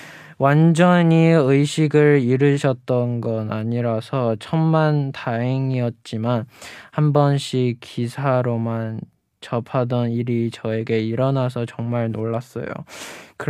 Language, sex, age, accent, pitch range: Chinese, male, 20-39, Korean, 120-140 Hz